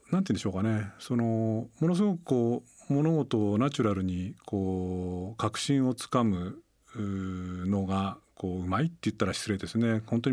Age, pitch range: 40-59, 95-115 Hz